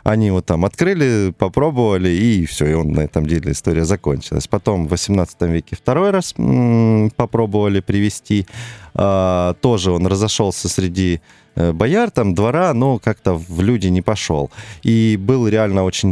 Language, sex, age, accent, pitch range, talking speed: Russian, male, 20-39, native, 85-115 Hz, 155 wpm